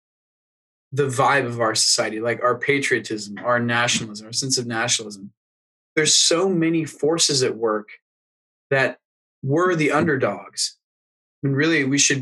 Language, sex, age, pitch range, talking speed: English, male, 20-39, 115-150 Hz, 140 wpm